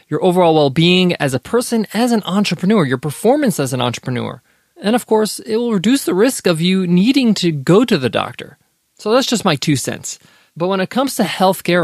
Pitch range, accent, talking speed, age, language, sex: 145-195 Hz, American, 215 wpm, 20-39, English, male